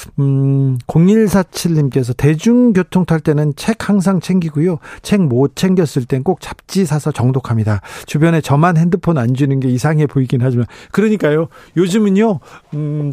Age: 40-59